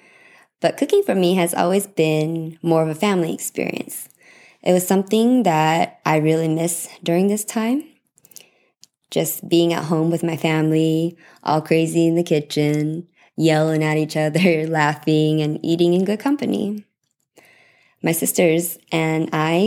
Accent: American